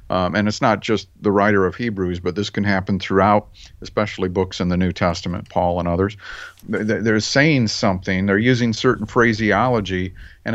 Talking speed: 175 wpm